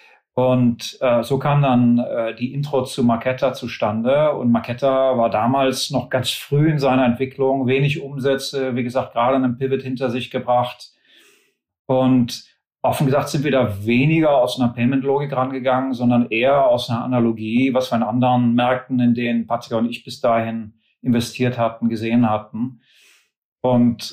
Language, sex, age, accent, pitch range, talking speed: German, male, 40-59, German, 115-130 Hz, 160 wpm